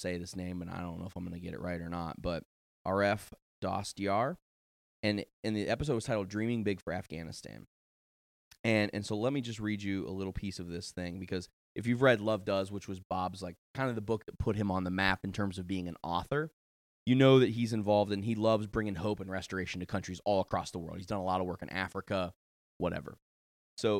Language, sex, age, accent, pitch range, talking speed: English, male, 20-39, American, 90-110 Hz, 245 wpm